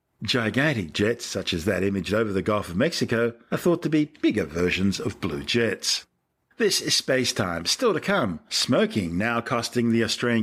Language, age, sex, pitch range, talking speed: English, 50-69, male, 100-130 Hz, 185 wpm